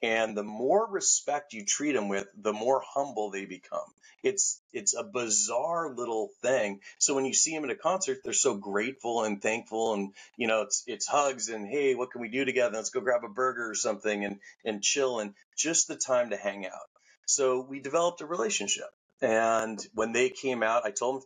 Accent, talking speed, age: American, 215 wpm, 30-49